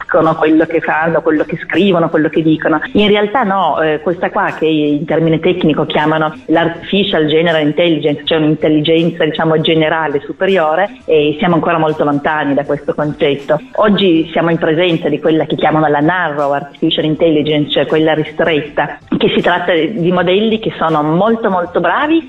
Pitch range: 160-195 Hz